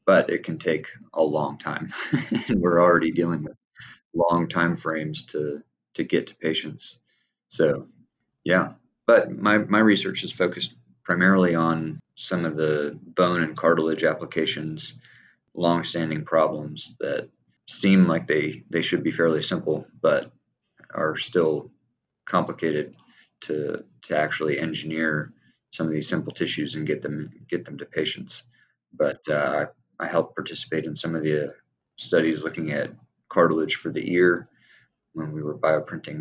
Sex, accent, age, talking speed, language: male, American, 30-49, 145 wpm, English